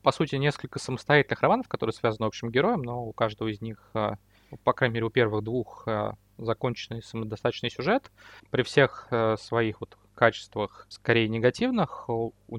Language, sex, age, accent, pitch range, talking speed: Russian, male, 20-39, native, 110-135 Hz, 155 wpm